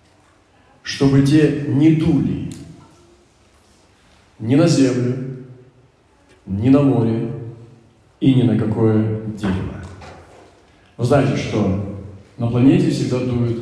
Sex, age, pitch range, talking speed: male, 40-59, 100-135 Hz, 95 wpm